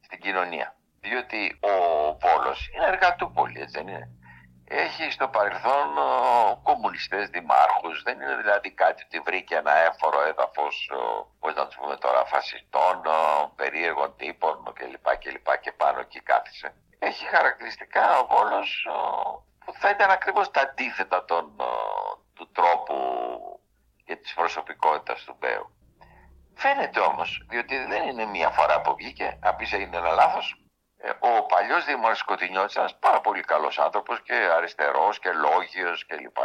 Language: Greek